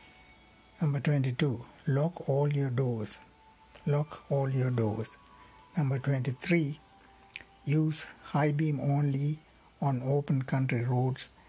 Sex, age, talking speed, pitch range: male, 60-79, 105 wpm, 125-145 Hz